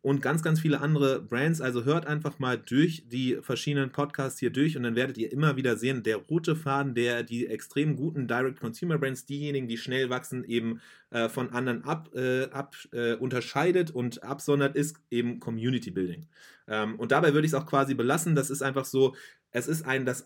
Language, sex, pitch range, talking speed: English, male, 120-145 Hz, 195 wpm